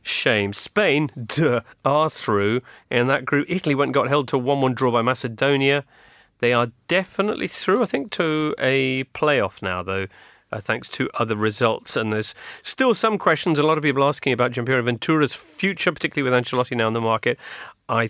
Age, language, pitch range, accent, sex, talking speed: 40-59, English, 110-150 Hz, British, male, 190 wpm